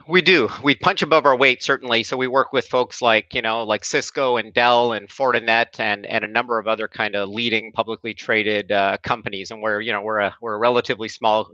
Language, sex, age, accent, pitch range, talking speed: English, male, 40-59, American, 105-125 Hz, 235 wpm